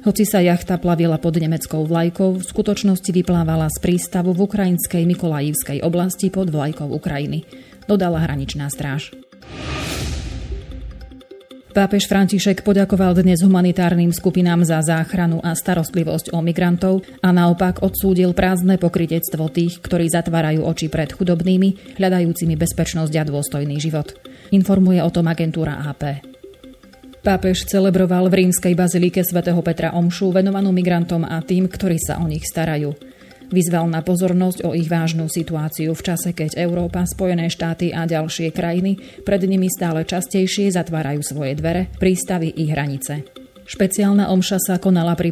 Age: 30-49